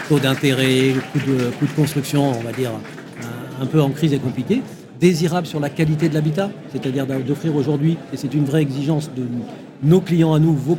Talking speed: 190 wpm